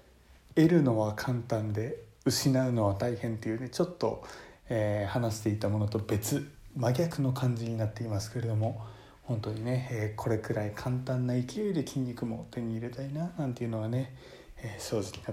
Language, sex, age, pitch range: Japanese, male, 20-39, 110-130 Hz